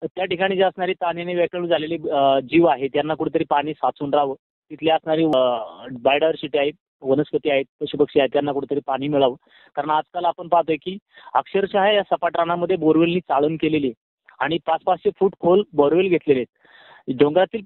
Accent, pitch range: native, 155-190 Hz